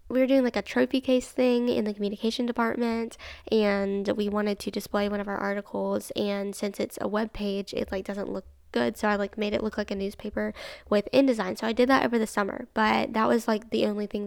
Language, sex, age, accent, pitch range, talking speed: English, female, 10-29, American, 205-240 Hz, 240 wpm